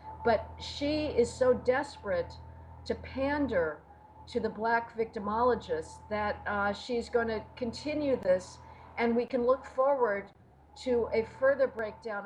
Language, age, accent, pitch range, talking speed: English, 50-69, American, 215-270 Hz, 130 wpm